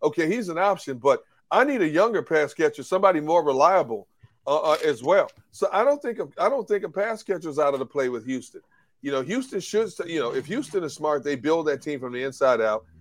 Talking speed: 245 wpm